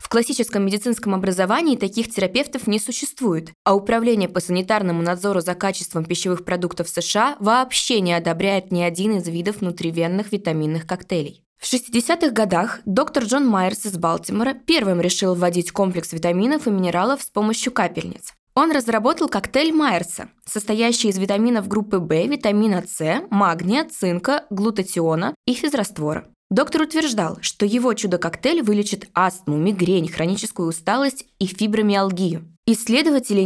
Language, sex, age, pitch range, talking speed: Russian, female, 20-39, 175-235 Hz, 135 wpm